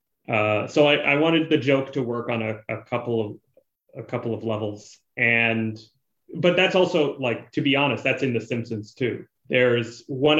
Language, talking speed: English, 190 wpm